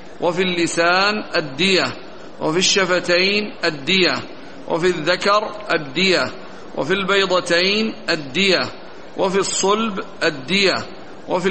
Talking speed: 85 wpm